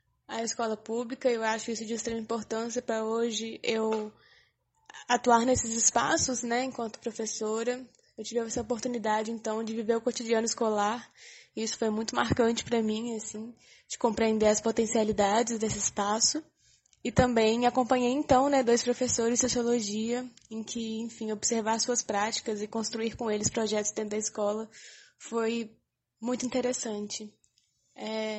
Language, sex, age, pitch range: Portuguese, female, 10-29, 220-245 Hz